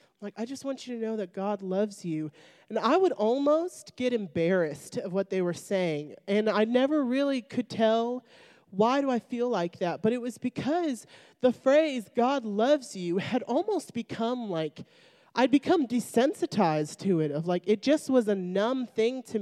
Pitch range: 195-260 Hz